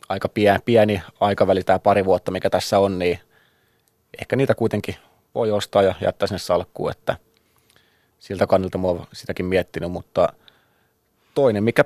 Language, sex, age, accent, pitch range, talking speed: Finnish, male, 20-39, native, 95-110 Hz, 145 wpm